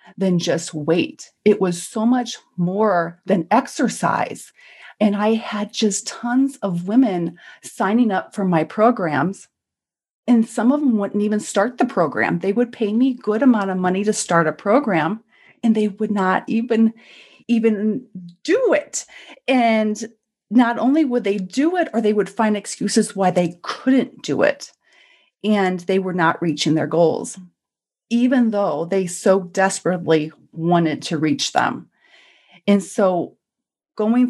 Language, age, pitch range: English, 30-49, 170-225 Hz